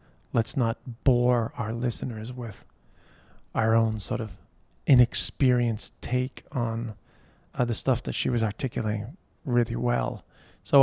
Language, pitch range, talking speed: English, 120-145 Hz, 125 wpm